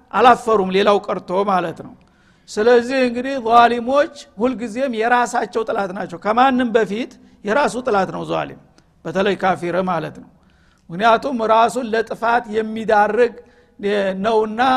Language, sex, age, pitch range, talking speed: Amharic, male, 50-69, 195-240 Hz, 115 wpm